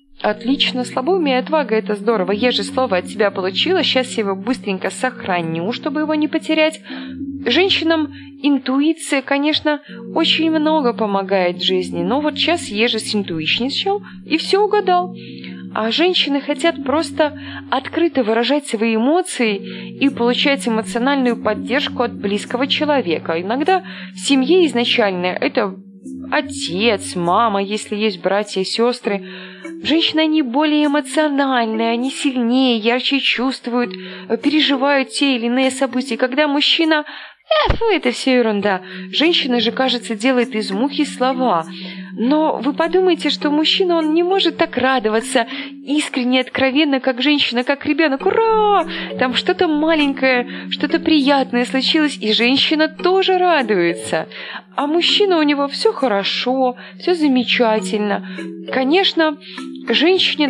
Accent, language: native, Russian